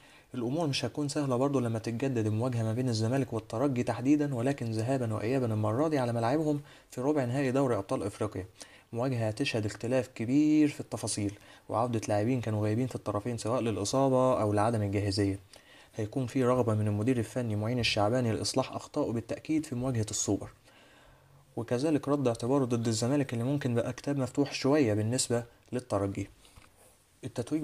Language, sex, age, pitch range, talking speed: Arabic, male, 20-39, 115-140 Hz, 150 wpm